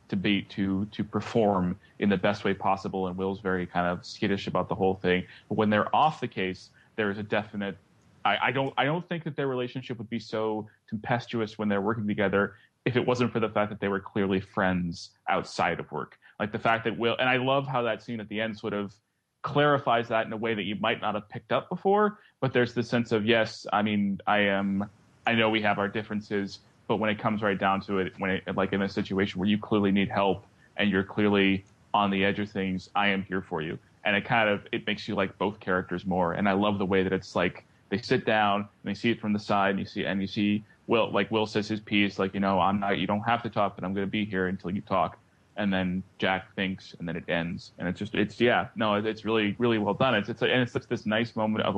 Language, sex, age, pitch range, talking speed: English, male, 30-49, 100-115 Hz, 265 wpm